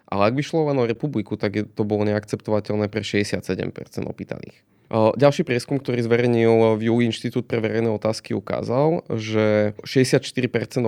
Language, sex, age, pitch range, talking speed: Slovak, male, 20-39, 105-120 Hz, 150 wpm